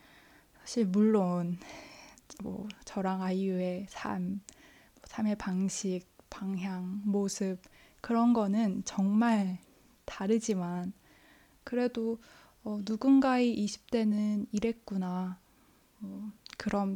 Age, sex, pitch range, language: 20-39, female, 195-230 Hz, Korean